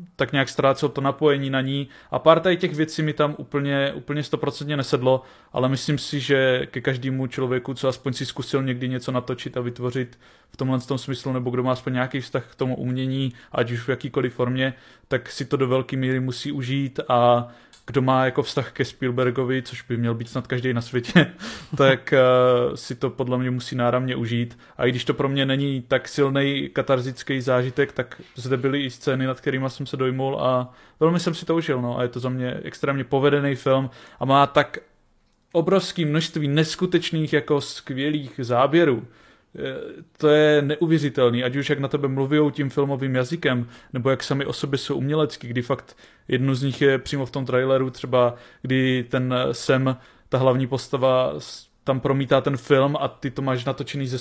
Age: 20-39